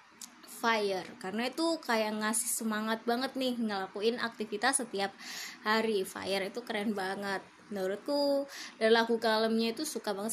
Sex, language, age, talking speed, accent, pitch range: female, Indonesian, 20-39, 135 wpm, native, 220-300 Hz